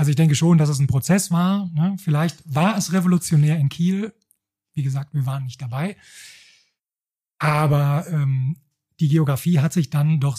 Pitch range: 145-170 Hz